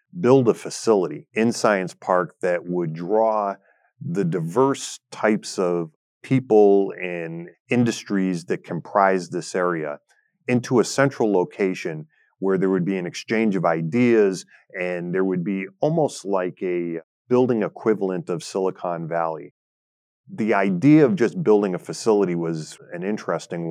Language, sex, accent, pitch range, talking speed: English, male, American, 85-105 Hz, 135 wpm